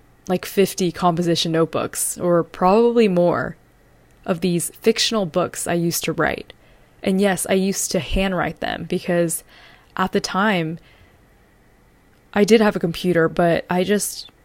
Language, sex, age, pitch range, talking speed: English, female, 20-39, 170-195 Hz, 140 wpm